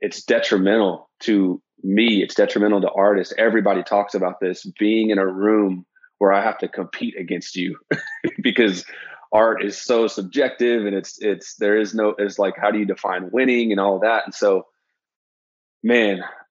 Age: 30-49